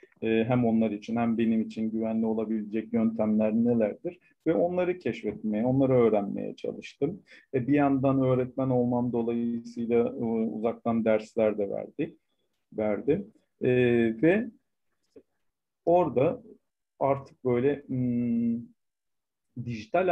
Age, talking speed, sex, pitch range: 50-69, 100 wpm, male, 115-145 Hz